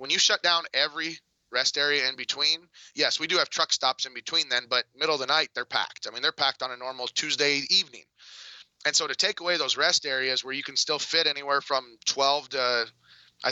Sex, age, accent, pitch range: male, 30-49, American, 125-145 Hz